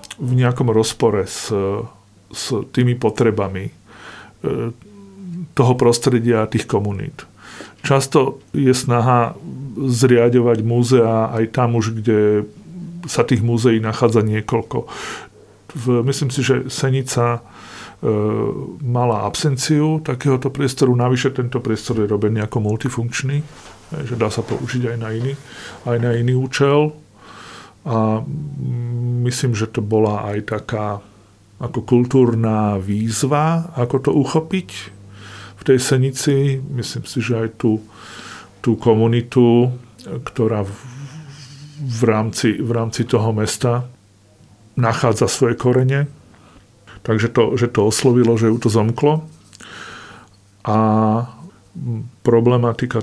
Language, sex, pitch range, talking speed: Slovak, male, 110-130 Hz, 110 wpm